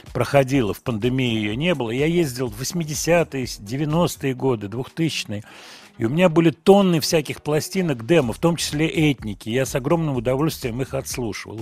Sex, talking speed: male, 160 wpm